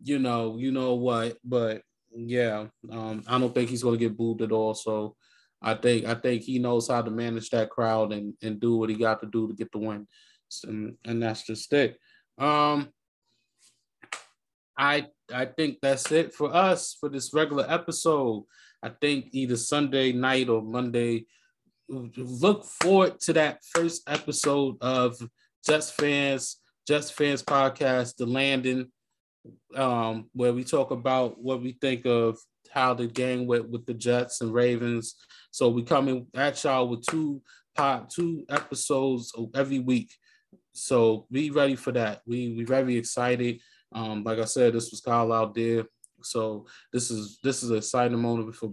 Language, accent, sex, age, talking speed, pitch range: English, American, male, 20-39, 165 wpm, 115-135 Hz